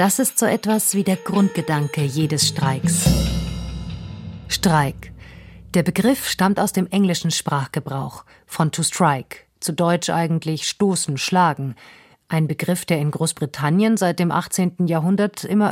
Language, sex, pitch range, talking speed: German, female, 150-195 Hz, 135 wpm